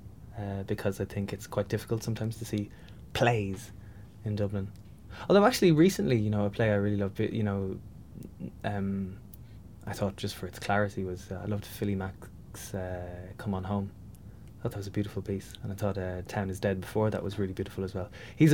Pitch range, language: 95-105 Hz, English